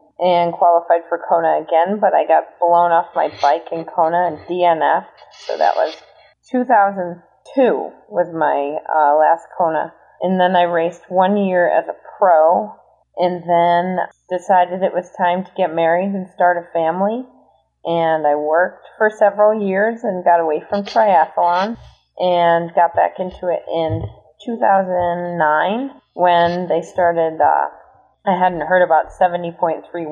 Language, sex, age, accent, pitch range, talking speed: English, female, 30-49, American, 160-185 Hz, 145 wpm